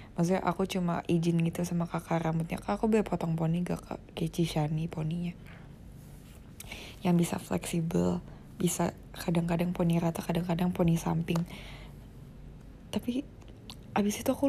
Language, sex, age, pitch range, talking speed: Malay, female, 20-39, 160-180 Hz, 130 wpm